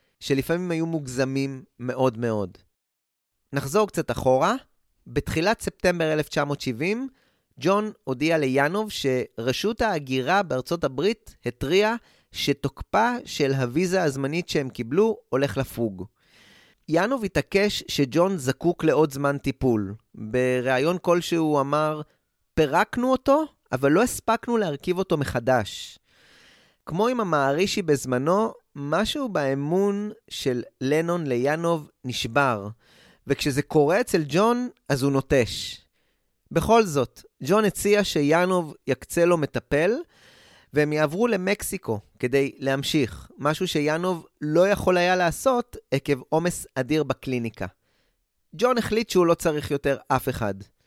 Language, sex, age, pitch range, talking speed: Hebrew, male, 30-49, 130-190 Hz, 110 wpm